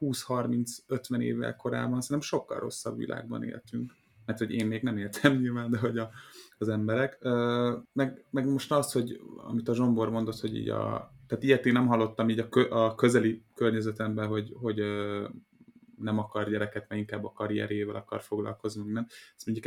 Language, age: Hungarian, 20-39